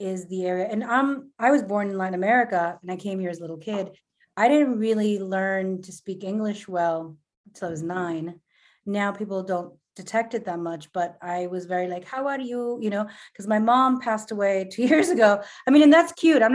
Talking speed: 220 wpm